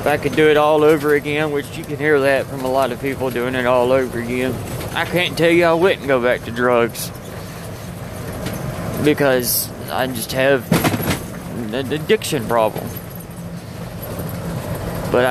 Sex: male